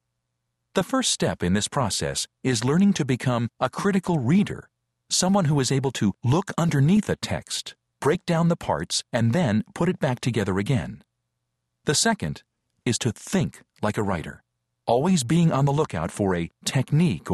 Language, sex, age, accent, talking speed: English, male, 50-69, American, 170 wpm